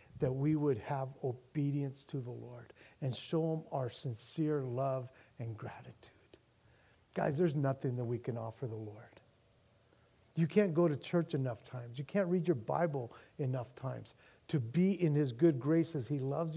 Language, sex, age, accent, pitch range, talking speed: English, male, 50-69, American, 120-160 Hz, 170 wpm